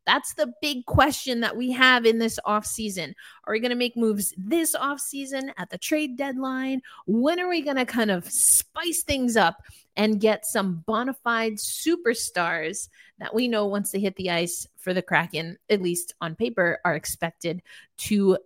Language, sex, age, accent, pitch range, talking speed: English, female, 30-49, American, 185-235 Hz, 185 wpm